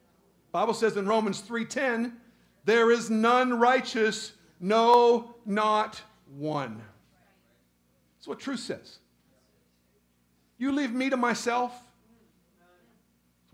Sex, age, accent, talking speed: male, 50-69, American, 100 wpm